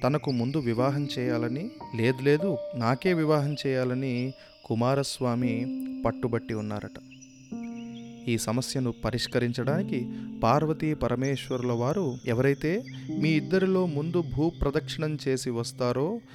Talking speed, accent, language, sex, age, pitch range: 90 wpm, native, Telugu, male, 30-49, 115-145 Hz